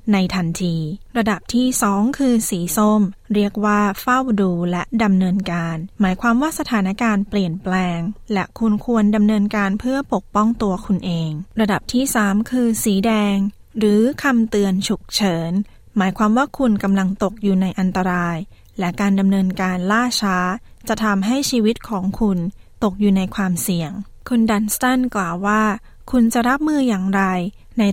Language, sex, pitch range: Thai, female, 175-220 Hz